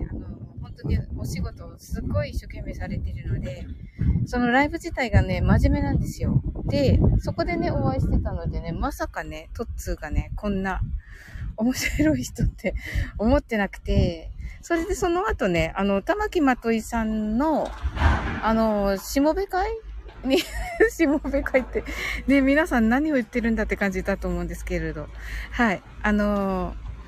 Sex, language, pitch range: female, Japanese, 205-305 Hz